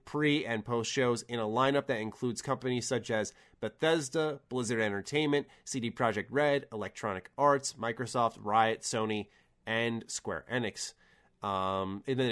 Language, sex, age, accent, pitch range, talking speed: English, male, 20-39, American, 105-130 Hz, 140 wpm